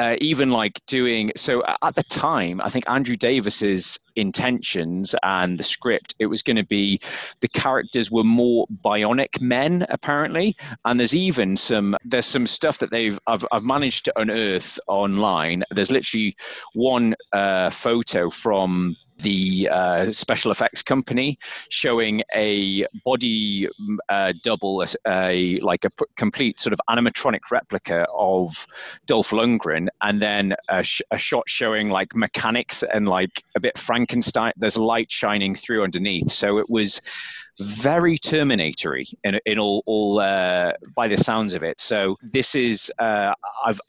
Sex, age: male, 30-49